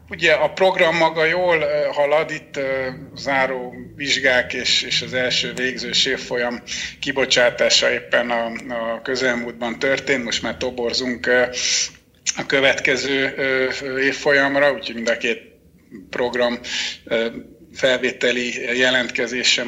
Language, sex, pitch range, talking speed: Hungarian, male, 115-140 Hz, 100 wpm